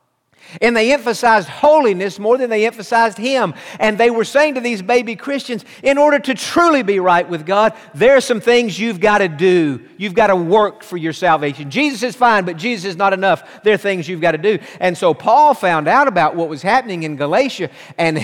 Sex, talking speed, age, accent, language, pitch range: male, 220 wpm, 50-69, American, English, 170-240 Hz